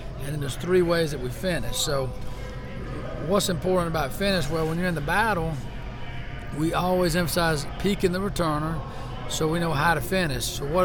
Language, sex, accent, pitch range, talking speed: English, male, American, 135-175 Hz, 185 wpm